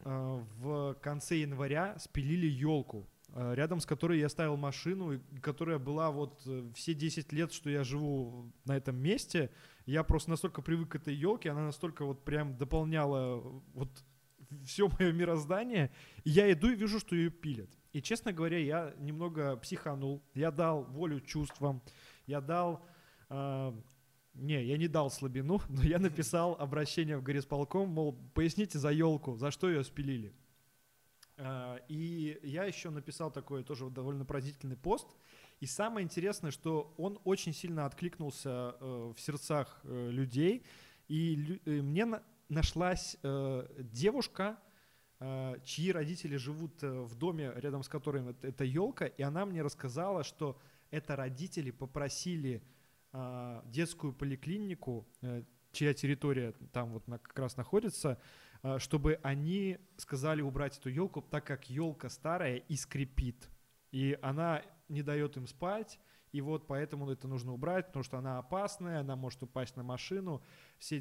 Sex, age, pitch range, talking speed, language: male, 20-39, 135-165 Hz, 135 wpm, Russian